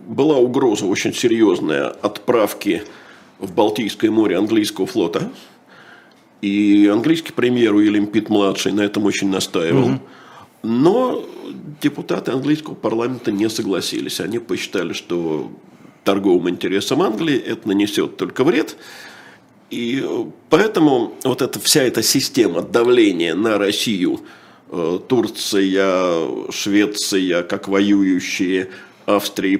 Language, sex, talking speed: Russian, male, 100 wpm